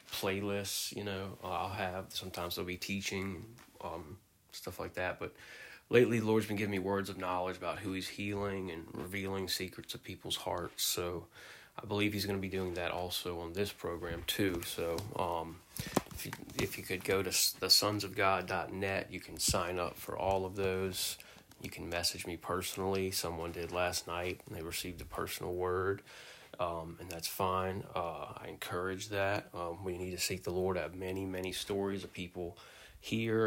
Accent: American